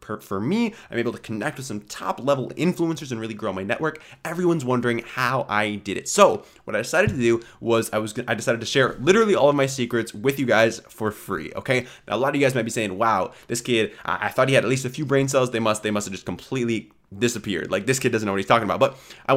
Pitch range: 110-135 Hz